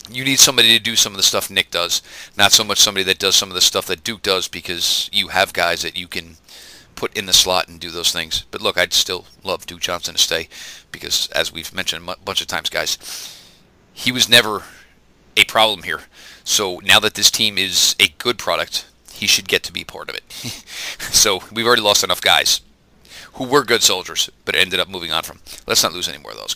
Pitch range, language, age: 90-115 Hz, English, 40-59